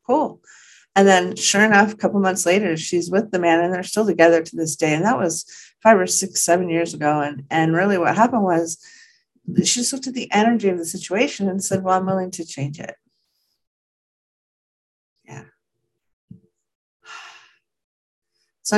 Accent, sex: American, female